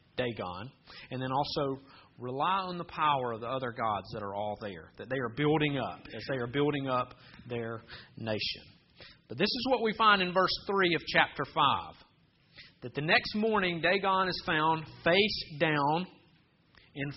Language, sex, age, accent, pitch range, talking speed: English, male, 40-59, American, 135-190 Hz, 175 wpm